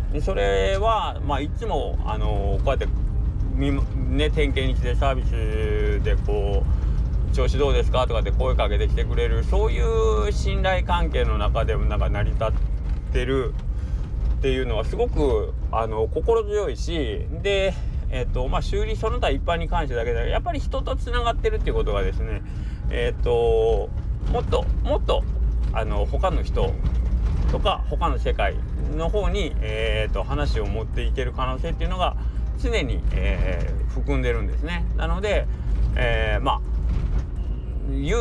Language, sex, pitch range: Japanese, male, 70-115 Hz